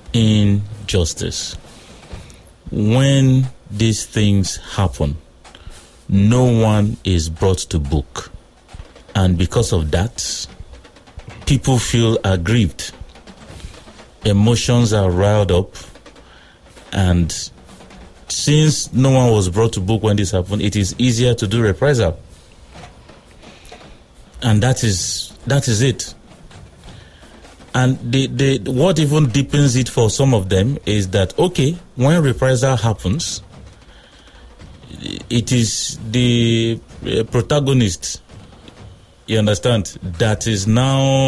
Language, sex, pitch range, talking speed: English, male, 95-125 Hz, 100 wpm